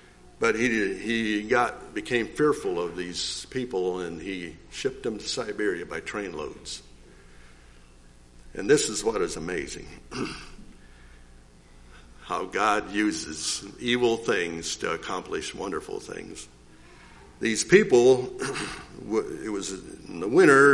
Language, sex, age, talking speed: English, male, 60-79, 115 wpm